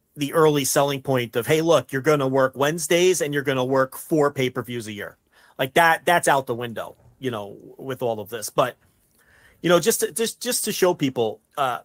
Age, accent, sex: 40-59, American, male